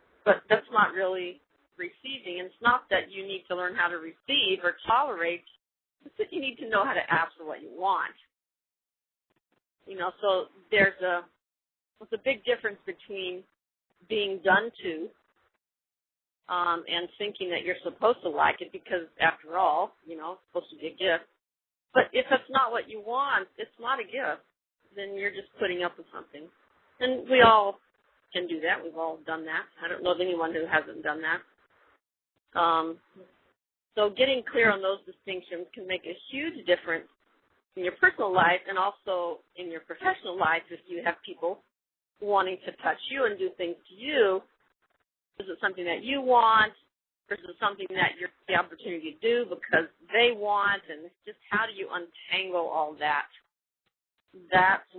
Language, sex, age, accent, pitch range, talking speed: English, female, 40-59, American, 175-220 Hz, 180 wpm